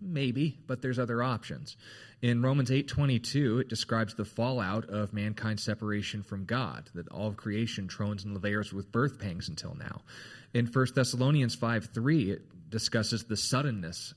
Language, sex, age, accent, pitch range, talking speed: English, male, 30-49, American, 100-125 Hz, 160 wpm